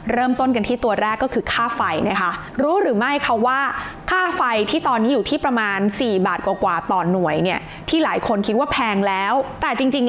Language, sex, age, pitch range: Thai, female, 20-39, 205-275 Hz